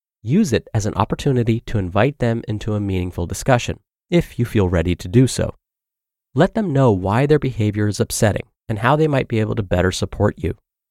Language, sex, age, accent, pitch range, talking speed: English, male, 30-49, American, 100-130 Hz, 205 wpm